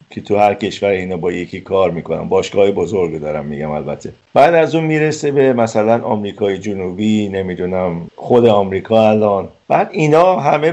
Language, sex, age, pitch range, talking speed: Persian, male, 50-69, 90-115 Hz, 160 wpm